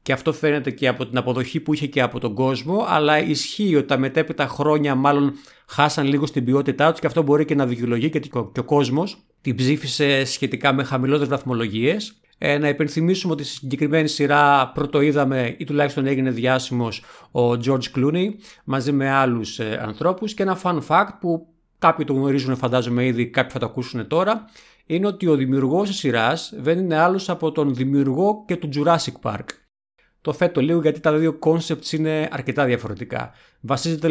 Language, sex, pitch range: Greek, male, 130-160 Hz